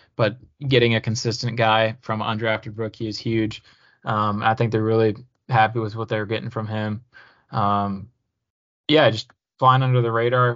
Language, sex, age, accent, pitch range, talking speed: English, male, 20-39, American, 110-125 Hz, 165 wpm